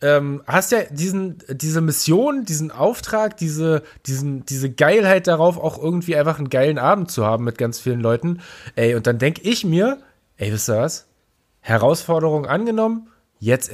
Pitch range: 135-195 Hz